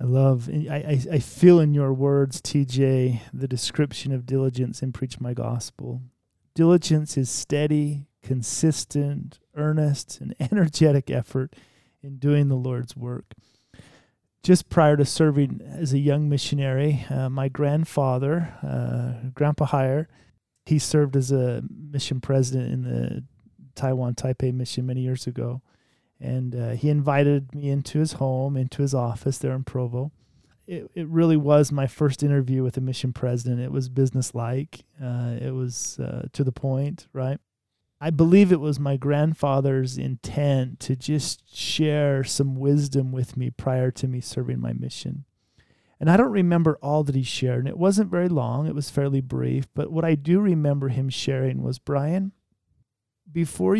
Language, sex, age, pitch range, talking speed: English, male, 30-49, 125-145 Hz, 155 wpm